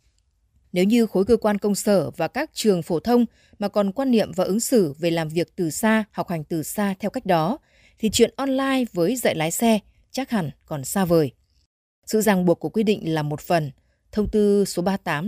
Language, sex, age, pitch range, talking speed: Vietnamese, female, 20-39, 165-225 Hz, 220 wpm